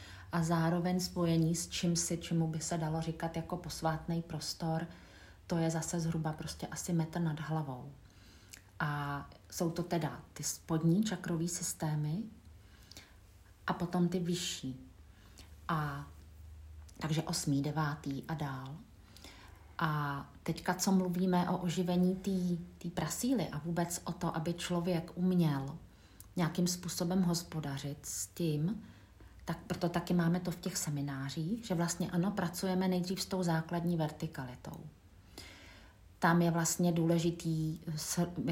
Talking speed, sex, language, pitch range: 130 wpm, female, Czech, 140-175 Hz